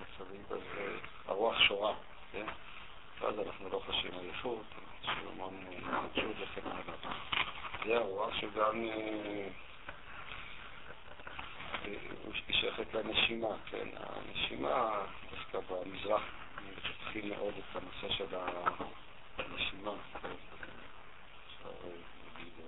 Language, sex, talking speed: Hebrew, male, 80 wpm